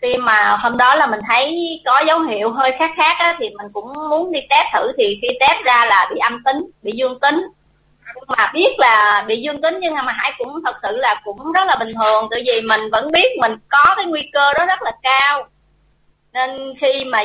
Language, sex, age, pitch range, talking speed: Vietnamese, female, 30-49, 215-290 Hz, 235 wpm